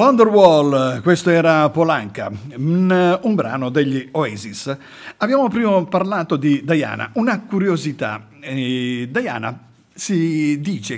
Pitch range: 130-185 Hz